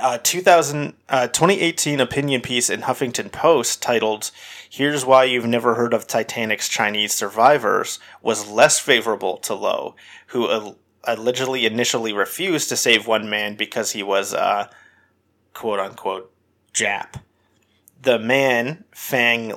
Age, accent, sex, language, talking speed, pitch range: 30-49, American, male, English, 130 wpm, 105-120 Hz